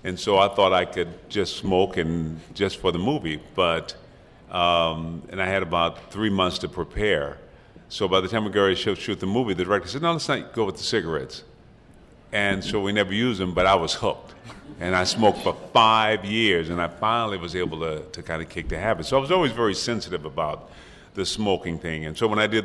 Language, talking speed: English, 230 wpm